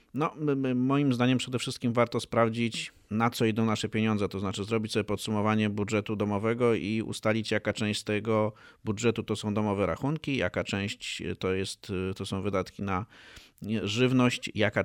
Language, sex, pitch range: Polish, male, 105-115 Hz